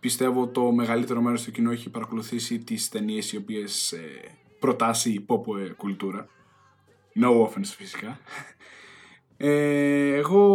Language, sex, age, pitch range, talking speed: Greek, male, 20-39, 120-185 Hz, 125 wpm